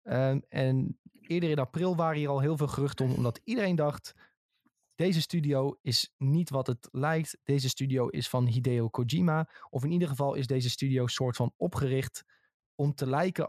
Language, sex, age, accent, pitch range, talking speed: Dutch, male, 20-39, Dutch, 125-155 Hz, 180 wpm